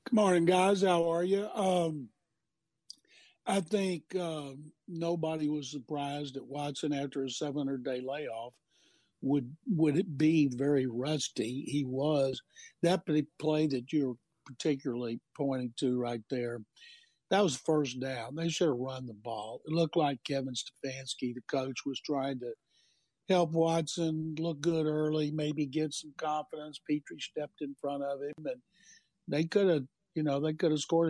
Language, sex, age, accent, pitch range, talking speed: English, male, 60-79, American, 135-165 Hz, 155 wpm